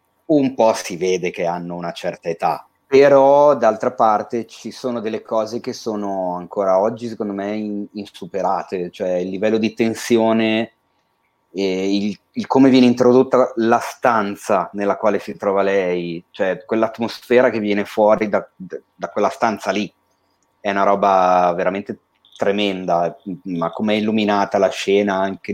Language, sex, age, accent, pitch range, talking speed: Italian, male, 30-49, native, 95-115 Hz, 145 wpm